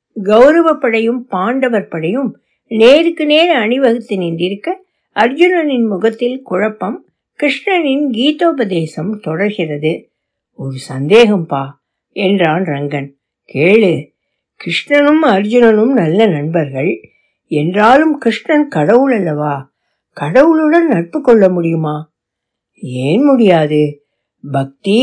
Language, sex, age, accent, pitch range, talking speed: Tamil, female, 60-79, native, 170-260 Hz, 75 wpm